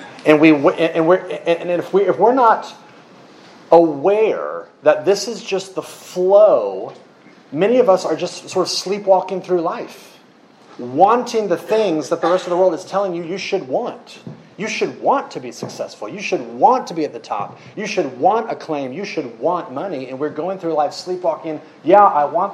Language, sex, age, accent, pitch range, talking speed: English, male, 30-49, American, 145-195 Hz, 195 wpm